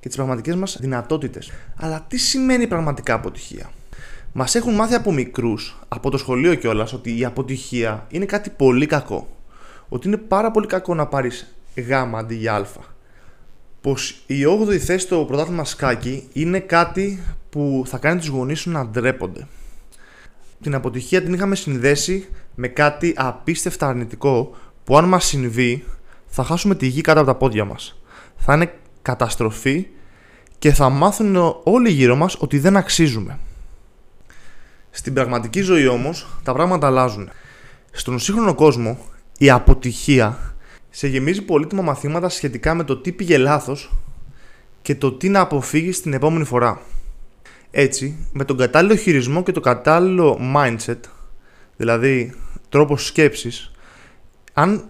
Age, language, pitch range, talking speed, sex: 20-39, Greek, 125-170 Hz, 140 wpm, male